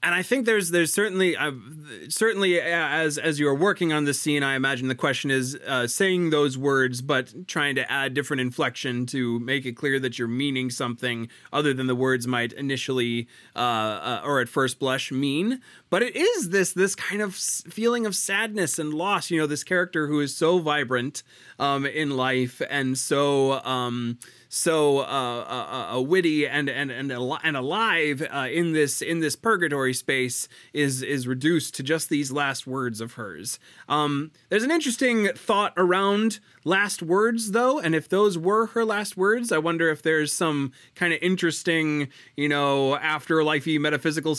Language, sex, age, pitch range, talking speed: English, male, 30-49, 130-170 Hz, 180 wpm